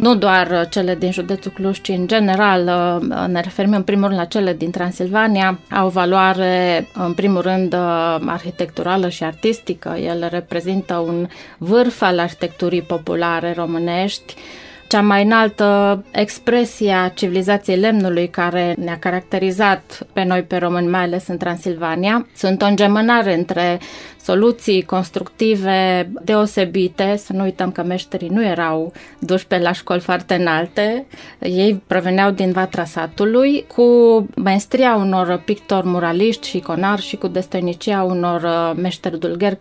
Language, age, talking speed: Romanian, 20-39, 135 wpm